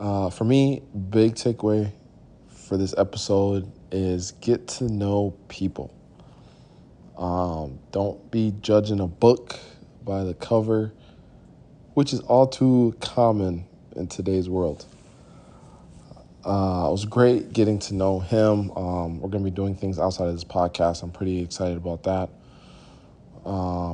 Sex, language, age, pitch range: male, English, 20-39, 90-110 Hz